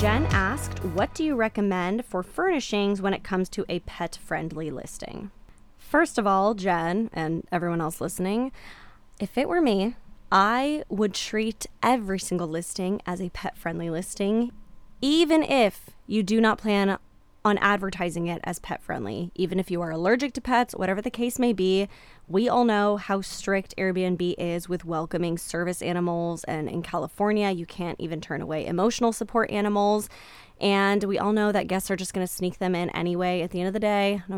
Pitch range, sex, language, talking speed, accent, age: 175-215 Hz, female, English, 185 wpm, American, 10-29